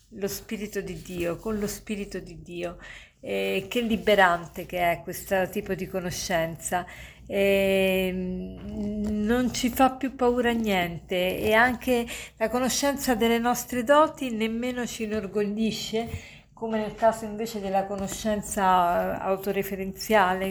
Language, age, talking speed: Italian, 50-69, 125 wpm